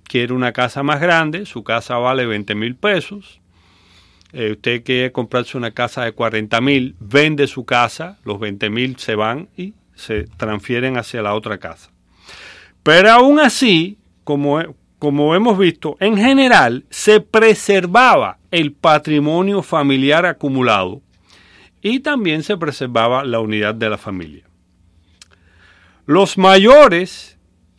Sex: male